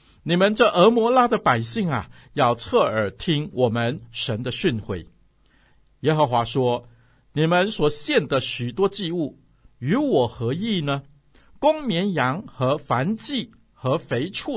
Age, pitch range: 60-79, 115-165 Hz